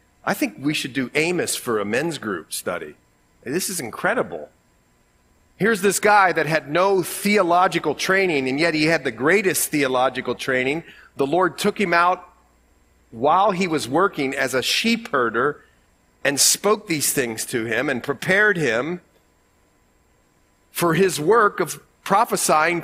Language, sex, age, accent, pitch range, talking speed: English, male, 40-59, American, 125-195 Hz, 150 wpm